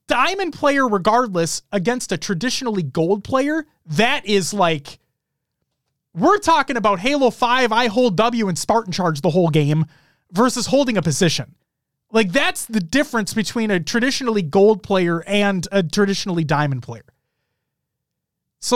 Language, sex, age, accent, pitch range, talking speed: English, male, 30-49, American, 150-245 Hz, 140 wpm